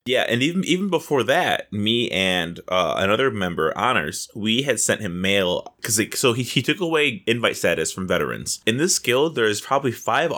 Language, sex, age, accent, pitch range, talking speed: English, male, 20-39, American, 105-140 Hz, 195 wpm